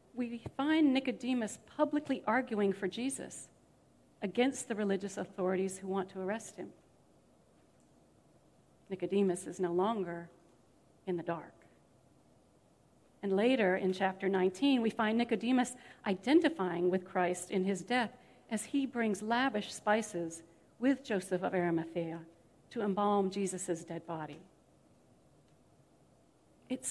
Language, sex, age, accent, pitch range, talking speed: English, female, 50-69, American, 180-225 Hz, 115 wpm